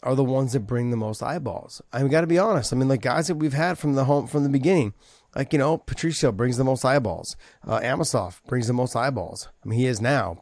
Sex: male